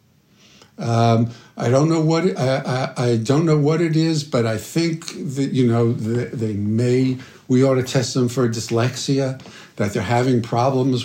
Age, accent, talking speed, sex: 60-79, American, 180 wpm, male